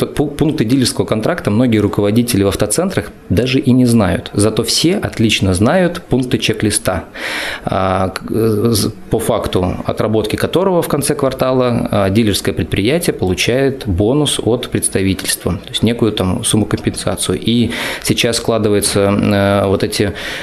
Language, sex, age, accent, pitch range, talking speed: Russian, male, 20-39, native, 105-125 Hz, 120 wpm